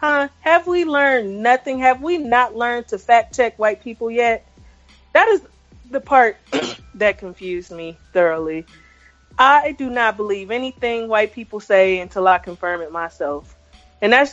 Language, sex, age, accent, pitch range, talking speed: English, female, 30-49, American, 185-240 Hz, 160 wpm